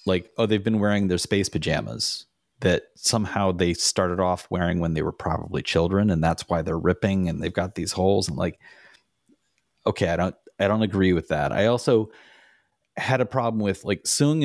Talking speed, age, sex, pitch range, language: 195 wpm, 30-49, male, 85-105 Hz, English